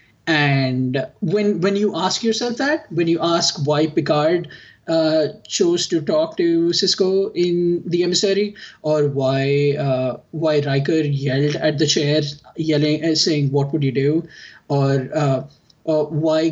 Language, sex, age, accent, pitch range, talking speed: English, male, 20-39, Indian, 145-175 Hz, 145 wpm